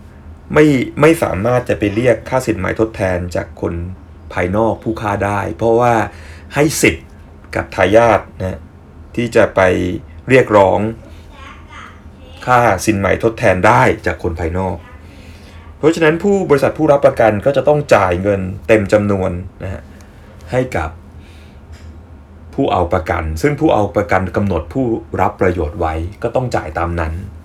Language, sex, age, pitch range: English, male, 30-49, 85-115 Hz